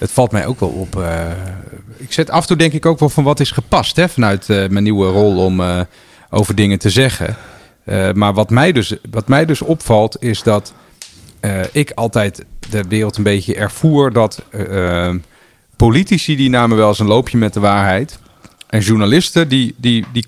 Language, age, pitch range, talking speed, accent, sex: Dutch, 40-59, 100-120 Hz, 170 wpm, Dutch, male